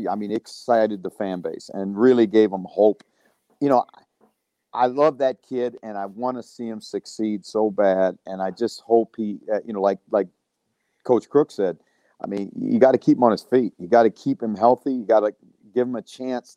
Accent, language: American, English